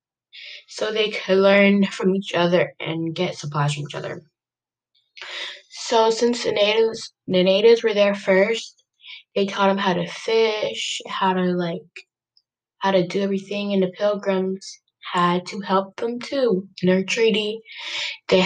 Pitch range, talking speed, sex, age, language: 175-220 Hz, 155 wpm, female, 10-29, English